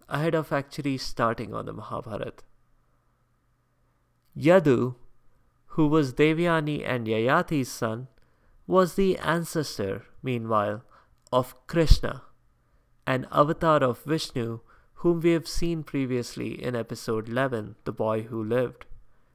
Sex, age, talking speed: male, 20-39, 110 wpm